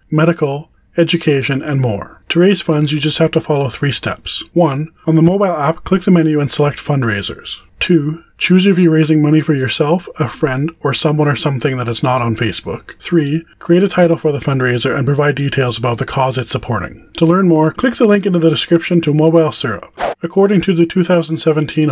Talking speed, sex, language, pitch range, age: 205 wpm, male, English, 130-160 Hz, 20-39